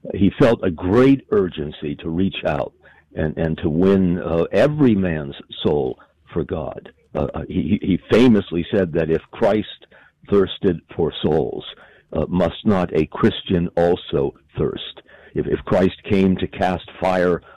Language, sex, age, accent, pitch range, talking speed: English, male, 60-79, American, 80-105 Hz, 145 wpm